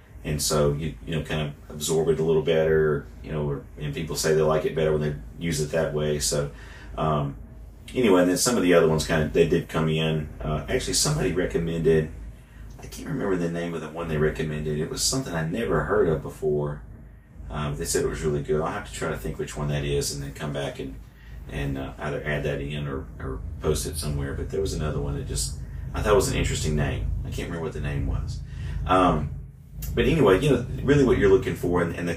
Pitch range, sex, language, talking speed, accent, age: 75-85 Hz, male, English, 245 wpm, American, 30-49